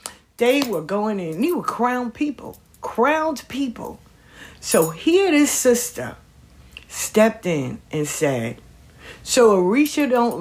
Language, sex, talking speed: English, female, 125 wpm